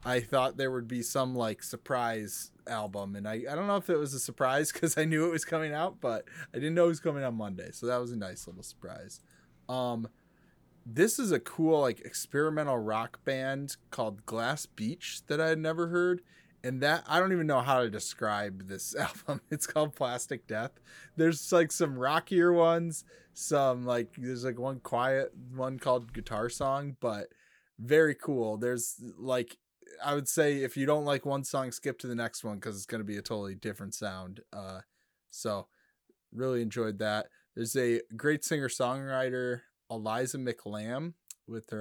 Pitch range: 115-155 Hz